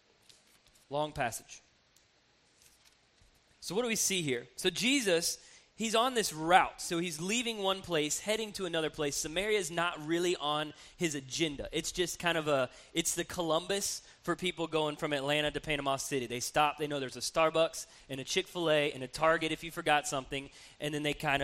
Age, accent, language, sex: 20-39, American, English, male